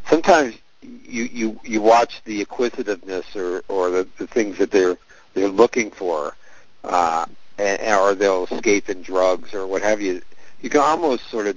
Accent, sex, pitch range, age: American, male, 95-115 Hz, 50-69